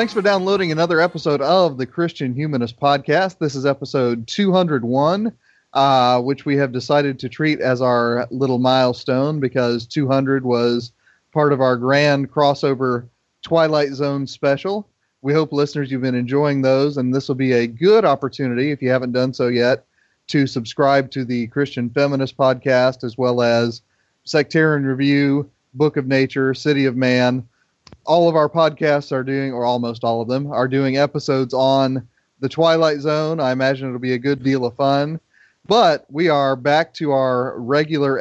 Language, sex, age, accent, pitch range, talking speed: English, male, 30-49, American, 130-150 Hz, 170 wpm